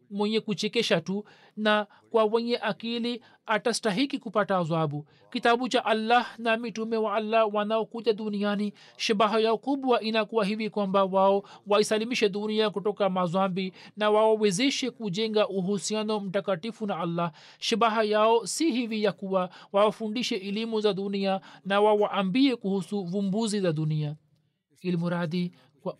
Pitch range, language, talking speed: 185-220 Hz, Swahili, 130 wpm